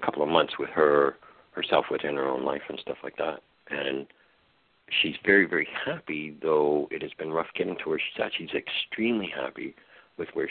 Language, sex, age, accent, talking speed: English, male, 60-79, American, 200 wpm